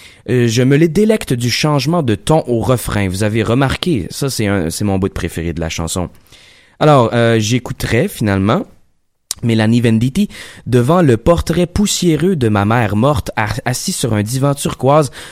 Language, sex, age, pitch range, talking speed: French, male, 20-39, 105-150 Hz, 170 wpm